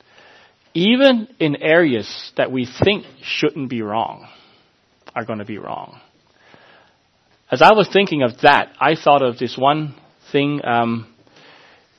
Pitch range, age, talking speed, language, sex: 125-165 Hz, 30-49, 135 wpm, English, male